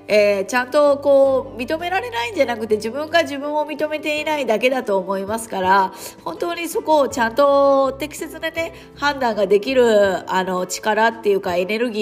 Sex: female